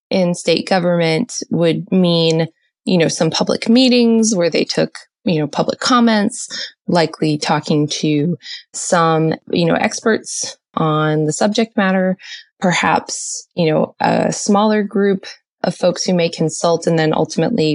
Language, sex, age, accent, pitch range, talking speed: English, female, 20-39, American, 160-195 Hz, 140 wpm